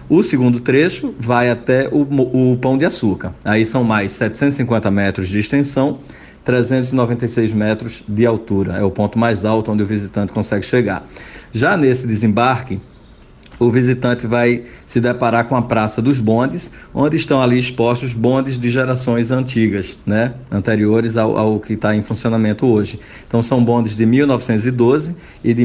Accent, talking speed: Brazilian, 160 wpm